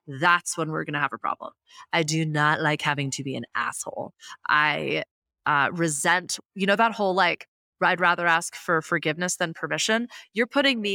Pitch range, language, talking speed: 165-215 Hz, English, 190 wpm